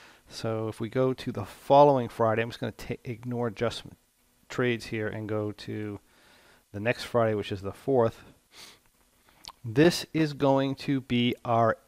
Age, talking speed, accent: 40-59, 165 wpm, American